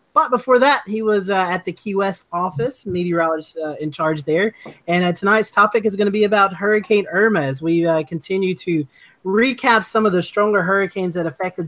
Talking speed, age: 205 wpm, 30-49